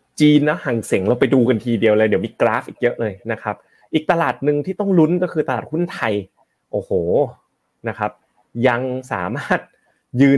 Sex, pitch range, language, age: male, 105-135 Hz, Thai, 30-49